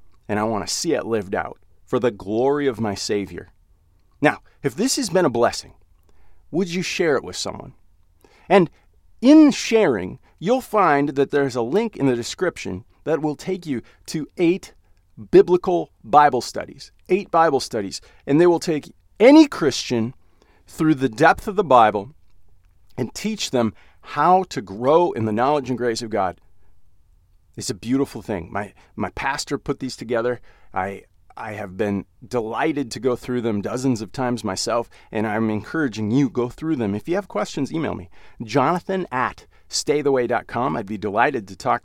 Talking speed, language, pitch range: 170 wpm, English, 105-165 Hz